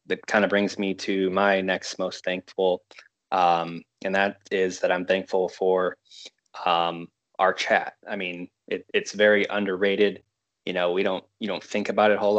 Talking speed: 185 wpm